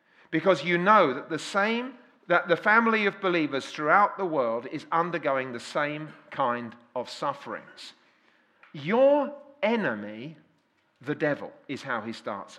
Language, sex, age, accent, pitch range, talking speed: English, male, 40-59, British, 170-275 Hz, 140 wpm